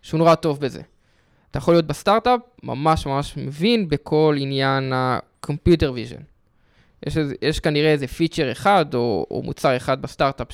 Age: 20-39